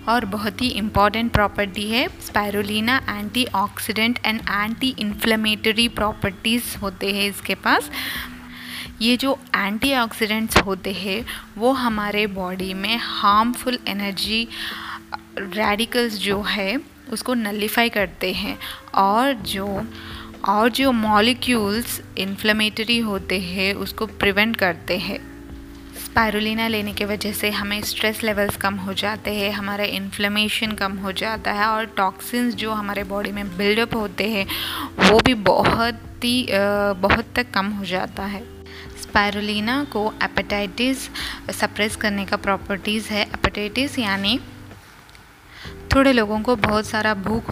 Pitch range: 200-225 Hz